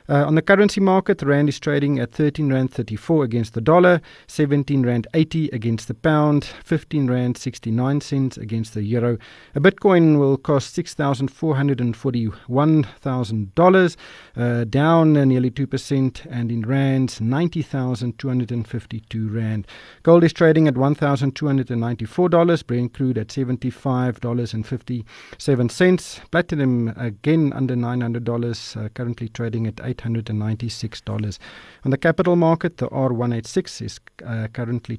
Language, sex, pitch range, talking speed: English, male, 120-150 Hz, 175 wpm